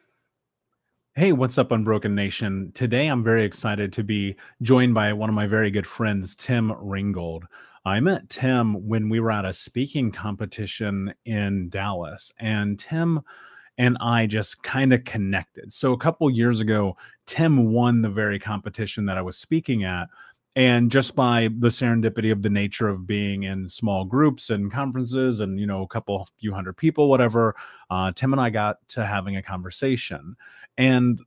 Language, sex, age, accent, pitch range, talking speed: English, male, 30-49, American, 100-125 Hz, 175 wpm